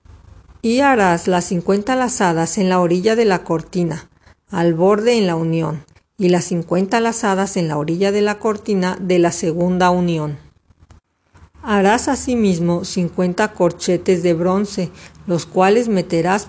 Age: 50-69